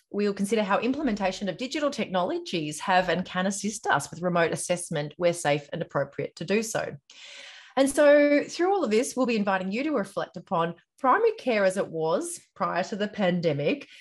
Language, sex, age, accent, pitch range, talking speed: English, female, 30-49, Australian, 165-225 Hz, 190 wpm